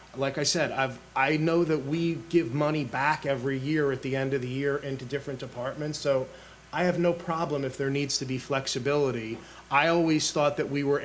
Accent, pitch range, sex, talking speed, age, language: American, 130-150 Hz, male, 210 wpm, 30-49, English